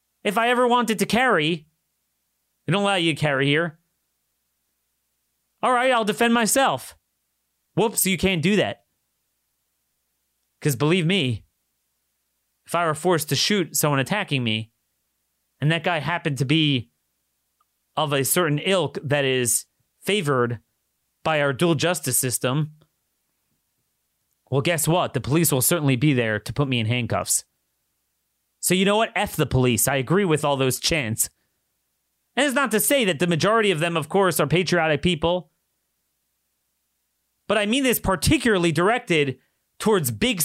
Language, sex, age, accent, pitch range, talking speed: English, male, 30-49, American, 125-190 Hz, 155 wpm